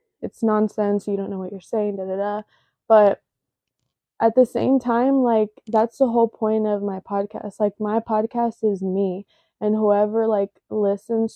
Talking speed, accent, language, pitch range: 175 wpm, American, English, 200-230 Hz